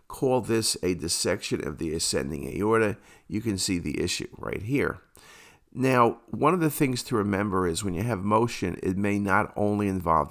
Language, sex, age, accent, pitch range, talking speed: English, male, 50-69, American, 95-115 Hz, 185 wpm